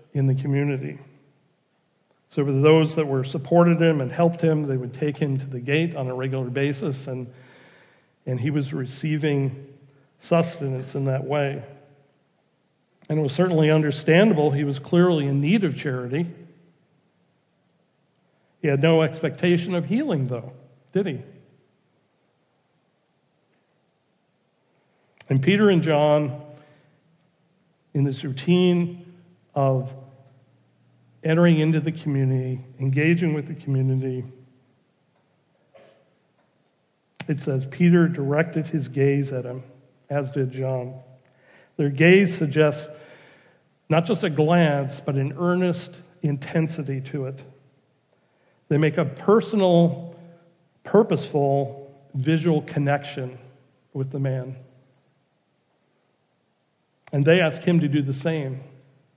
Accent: American